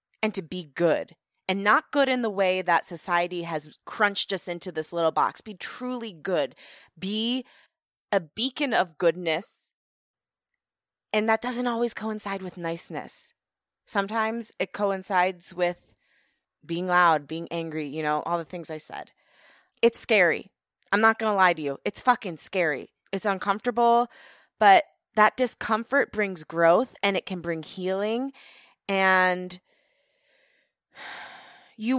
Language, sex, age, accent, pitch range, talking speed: English, female, 20-39, American, 170-215 Hz, 140 wpm